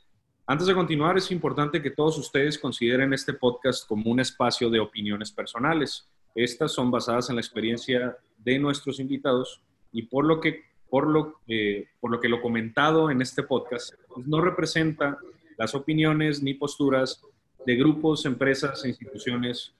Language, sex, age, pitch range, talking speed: English, male, 30-49, 120-155 Hz, 165 wpm